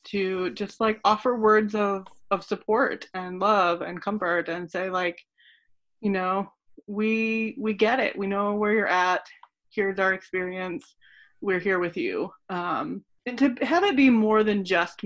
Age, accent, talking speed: 20-39, American, 165 wpm